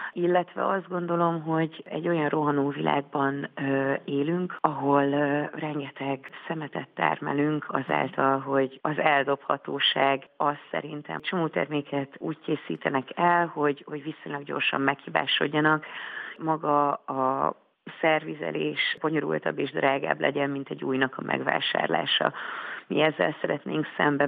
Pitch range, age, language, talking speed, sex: 140-155 Hz, 40-59, Hungarian, 115 wpm, female